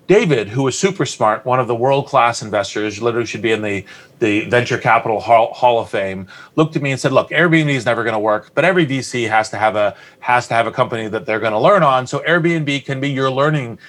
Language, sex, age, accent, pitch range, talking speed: English, male, 30-49, American, 120-150 Hz, 240 wpm